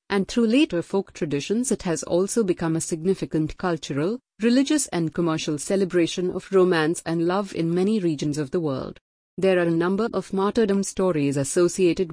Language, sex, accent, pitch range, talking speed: English, female, Indian, 160-190 Hz, 170 wpm